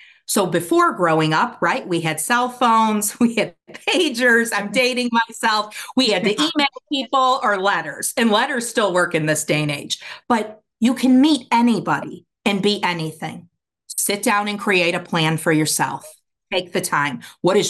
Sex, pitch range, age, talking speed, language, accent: female, 165-220 Hz, 40-59, 175 wpm, English, American